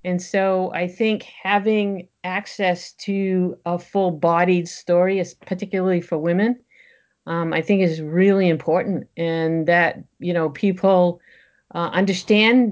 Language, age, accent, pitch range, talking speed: English, 50-69, American, 165-190 Hz, 125 wpm